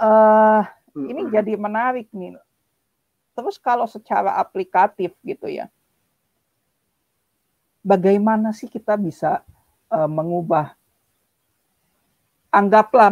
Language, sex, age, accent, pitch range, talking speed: Indonesian, female, 50-69, native, 175-220 Hz, 80 wpm